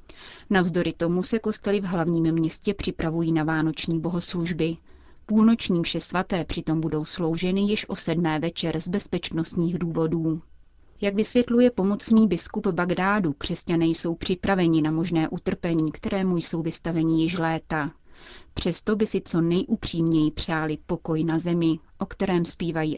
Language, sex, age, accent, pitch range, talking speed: Czech, female, 30-49, native, 160-190 Hz, 135 wpm